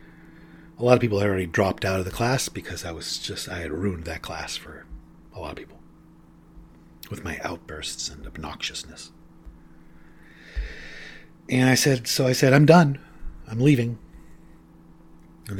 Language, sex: English, male